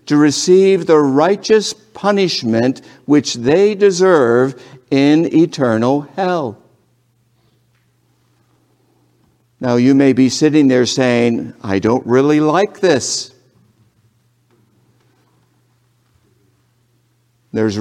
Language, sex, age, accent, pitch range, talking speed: English, male, 60-79, American, 115-150 Hz, 80 wpm